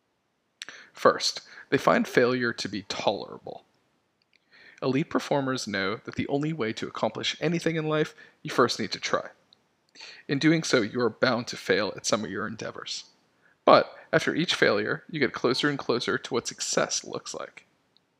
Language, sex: English, male